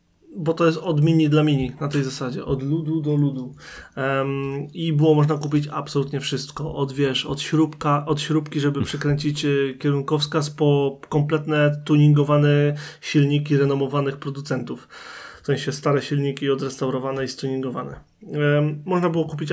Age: 30-49